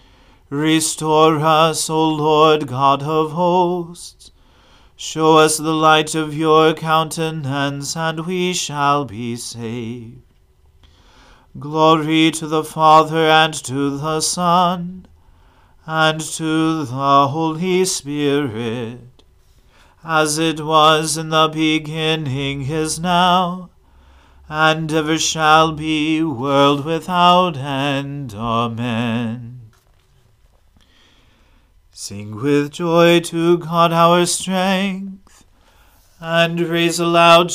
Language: English